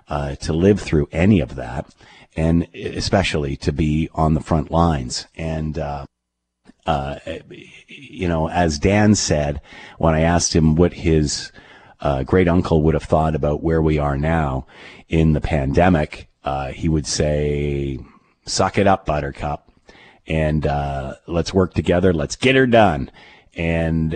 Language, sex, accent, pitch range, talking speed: English, male, American, 75-90 Hz, 150 wpm